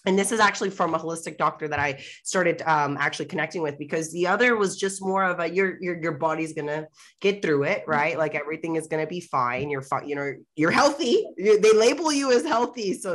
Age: 20-39